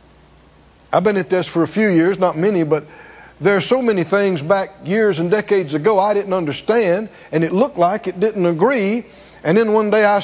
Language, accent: English, American